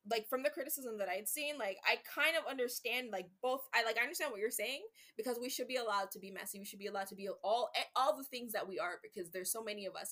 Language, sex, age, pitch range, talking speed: English, female, 20-39, 195-270 Hz, 290 wpm